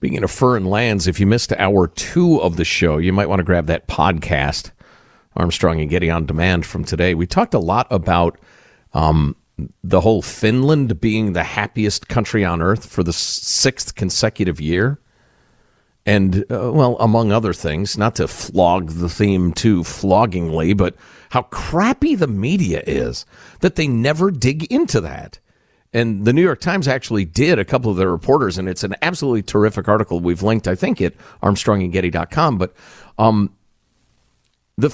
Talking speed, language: 170 wpm, English